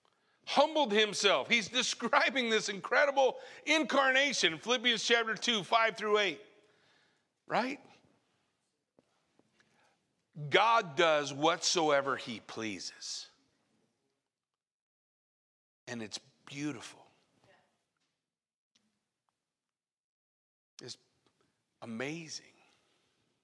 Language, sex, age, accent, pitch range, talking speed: English, male, 50-69, American, 145-210 Hz, 60 wpm